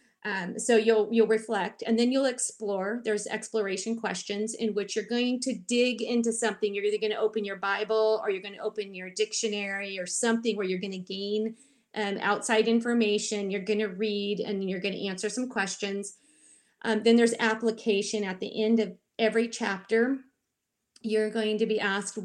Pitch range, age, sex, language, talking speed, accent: 195-230 Hz, 30-49, female, English, 190 wpm, American